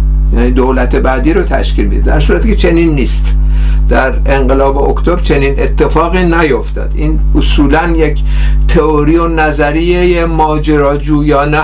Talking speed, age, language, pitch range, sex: 125 wpm, 50-69, Persian, 135-180 Hz, male